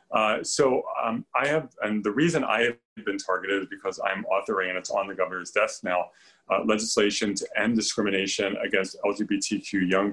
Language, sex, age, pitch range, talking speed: English, male, 30-49, 95-115 Hz, 185 wpm